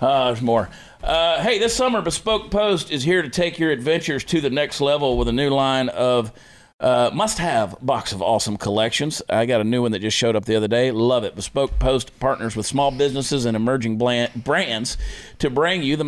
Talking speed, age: 215 wpm, 40-59